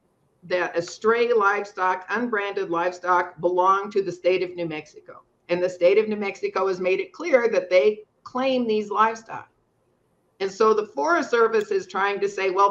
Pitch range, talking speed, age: 180-230 Hz, 175 wpm, 50-69